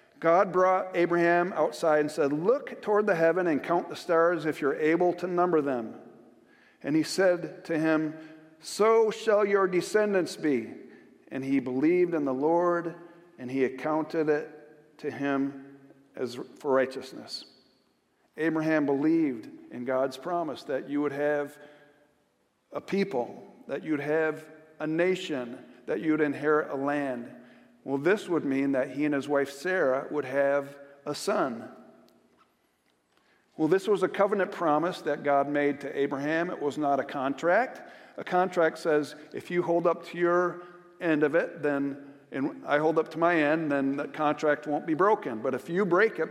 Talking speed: 165 wpm